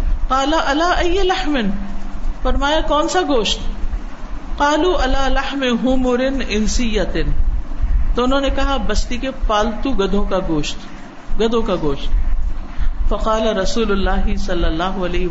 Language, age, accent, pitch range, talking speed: English, 50-69, Indian, 210-295 Hz, 100 wpm